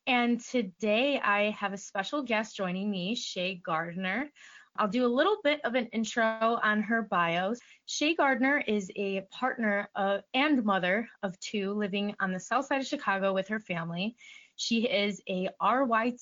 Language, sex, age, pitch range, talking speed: English, female, 20-39, 195-235 Hz, 165 wpm